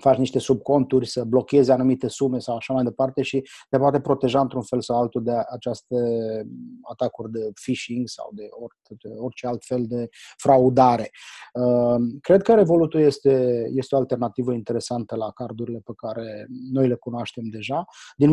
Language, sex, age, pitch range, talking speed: English, male, 20-39, 120-140 Hz, 155 wpm